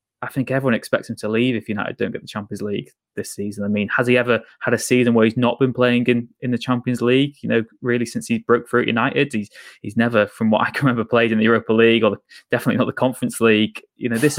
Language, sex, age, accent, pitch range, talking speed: English, male, 20-39, British, 105-120 Hz, 275 wpm